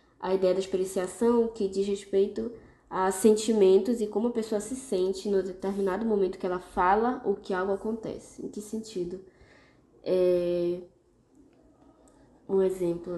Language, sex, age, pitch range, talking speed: Portuguese, female, 10-29, 190-225 Hz, 140 wpm